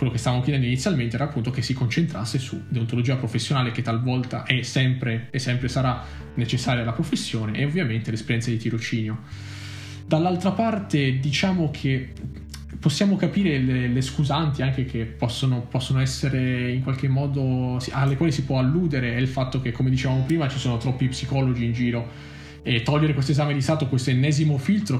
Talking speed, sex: 175 wpm, male